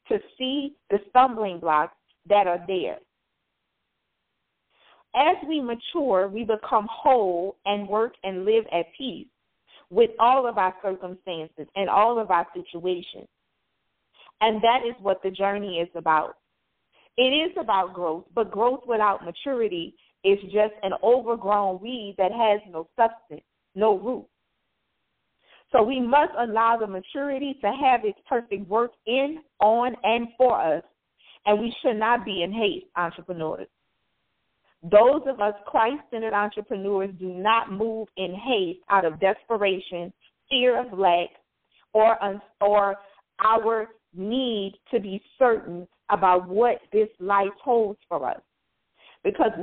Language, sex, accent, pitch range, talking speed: English, female, American, 195-245 Hz, 135 wpm